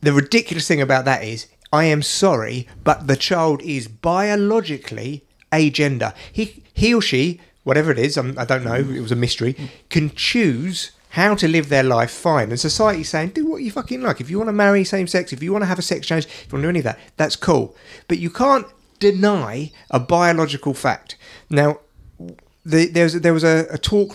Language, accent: English, British